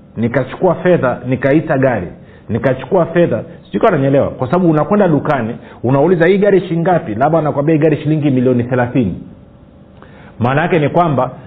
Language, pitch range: Swahili, 115-155 Hz